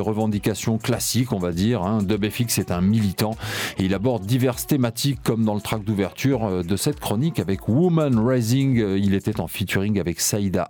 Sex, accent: male, French